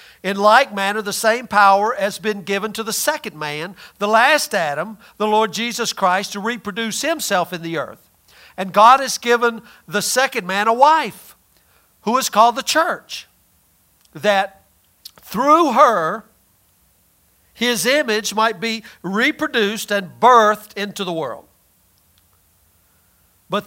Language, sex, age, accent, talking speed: English, male, 50-69, American, 135 wpm